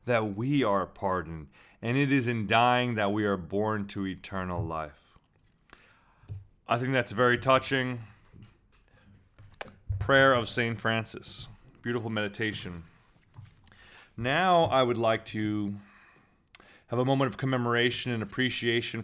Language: English